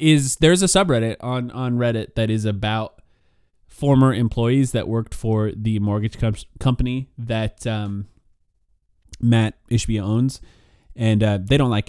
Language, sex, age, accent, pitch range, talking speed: English, male, 30-49, American, 100-130 Hz, 140 wpm